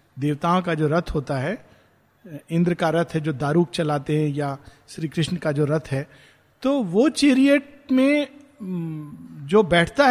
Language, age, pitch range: Hindi, 50-69, 165-225 Hz